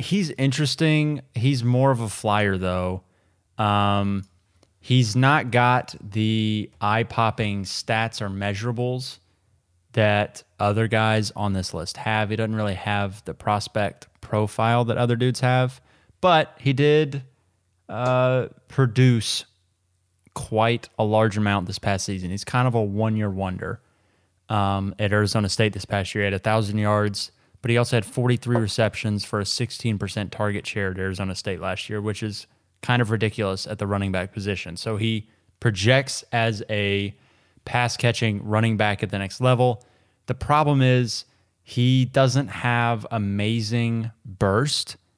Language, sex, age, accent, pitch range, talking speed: English, male, 20-39, American, 100-120 Hz, 145 wpm